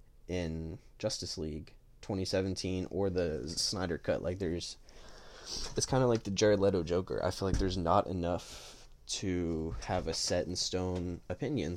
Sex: male